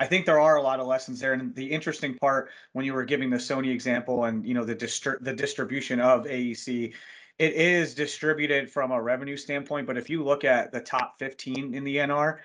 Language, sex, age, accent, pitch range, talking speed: English, male, 30-49, American, 120-135 Hz, 225 wpm